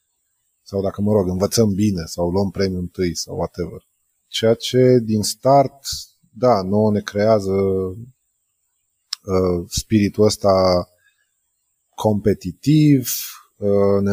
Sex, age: male, 20-39